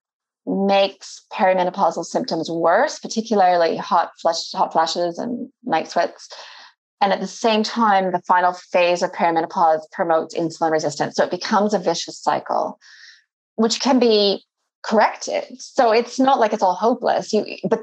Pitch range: 170-215 Hz